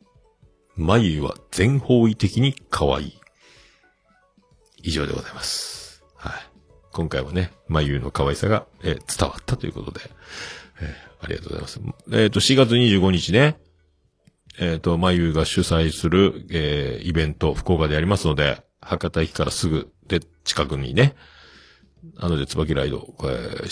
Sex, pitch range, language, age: male, 75-100 Hz, Japanese, 50-69